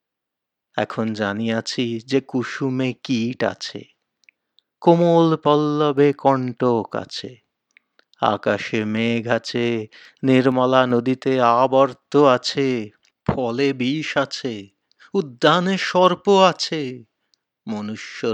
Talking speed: 55 wpm